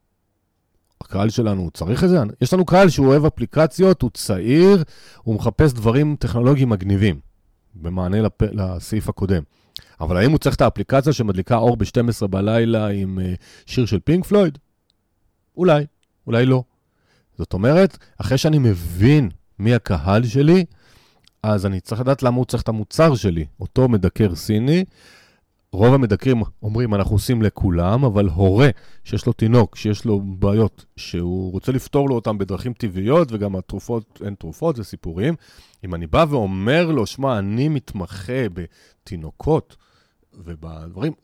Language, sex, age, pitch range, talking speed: Hebrew, male, 40-59, 95-130 Hz, 145 wpm